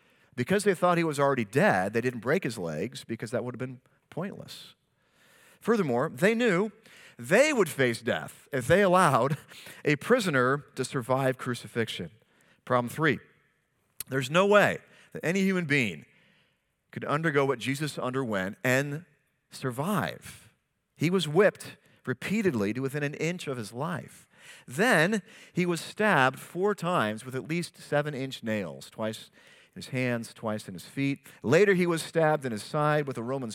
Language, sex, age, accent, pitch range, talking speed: English, male, 40-59, American, 130-170 Hz, 160 wpm